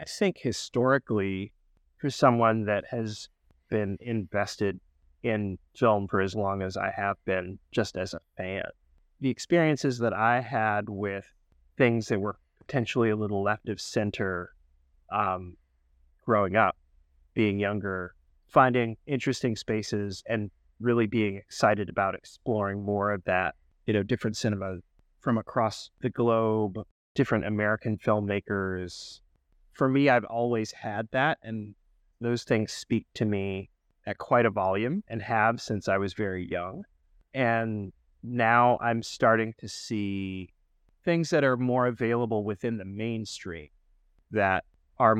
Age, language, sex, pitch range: 30-49, English, male, 95-115 Hz